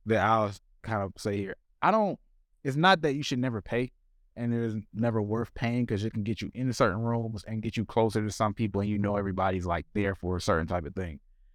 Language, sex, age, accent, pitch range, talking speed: English, male, 20-39, American, 90-115 Hz, 250 wpm